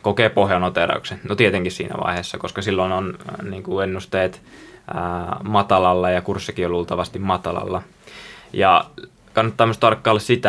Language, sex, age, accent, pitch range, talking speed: Finnish, male, 20-39, native, 90-100 Hz, 135 wpm